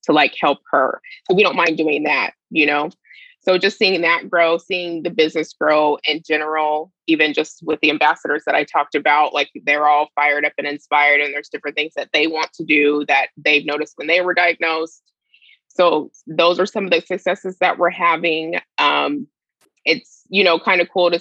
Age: 20-39